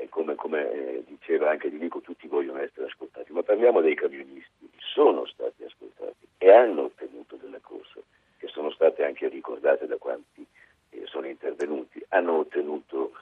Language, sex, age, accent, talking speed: Italian, male, 60-79, native, 160 wpm